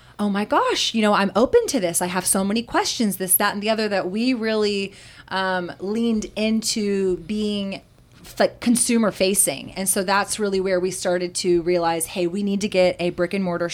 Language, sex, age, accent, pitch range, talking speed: English, female, 20-39, American, 185-225 Hz, 205 wpm